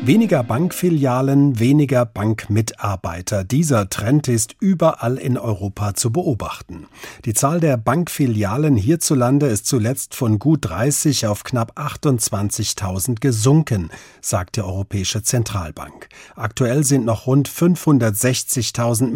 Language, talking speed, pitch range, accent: German, 110 wpm, 105-140 Hz, German